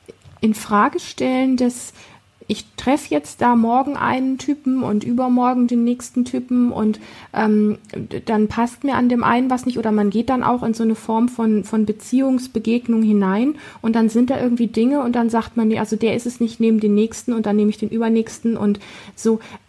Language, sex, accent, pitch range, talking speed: German, female, German, 215-245 Hz, 200 wpm